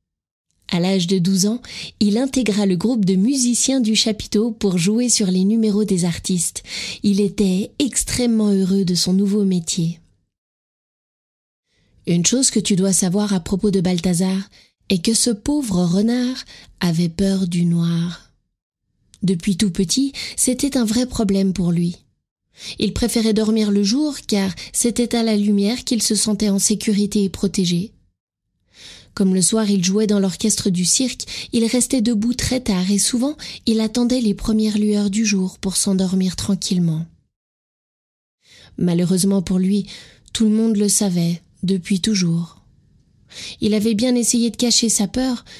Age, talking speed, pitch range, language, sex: 20-39, 155 wpm, 190-235 Hz, French, female